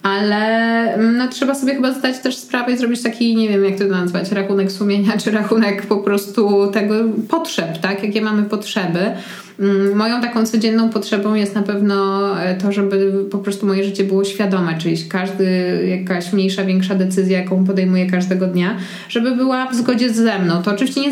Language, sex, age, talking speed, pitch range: Polish, female, 20-39, 175 wpm, 190-220 Hz